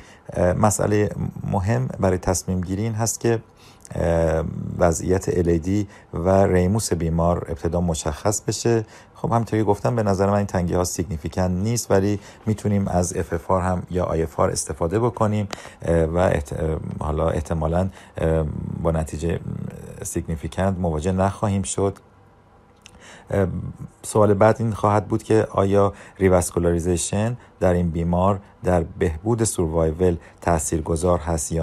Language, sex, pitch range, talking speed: Persian, male, 85-105 Hz, 115 wpm